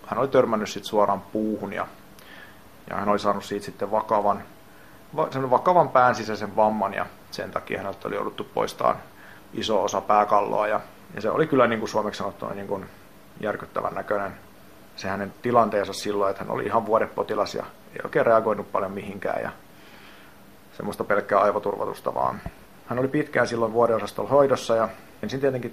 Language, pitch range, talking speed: Finnish, 100-120 Hz, 155 wpm